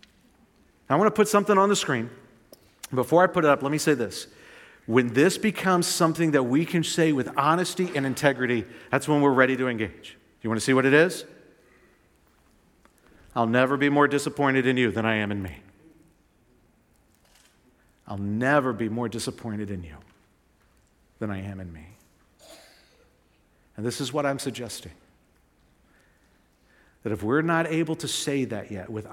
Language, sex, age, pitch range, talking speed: English, male, 50-69, 100-140 Hz, 170 wpm